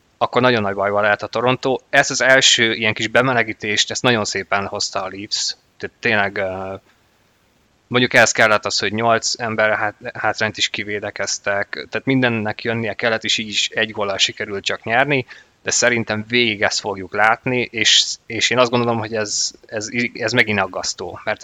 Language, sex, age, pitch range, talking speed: Hungarian, male, 20-39, 105-125 Hz, 170 wpm